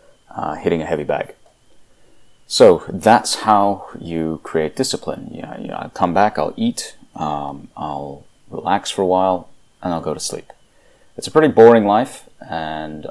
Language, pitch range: English, 80-100 Hz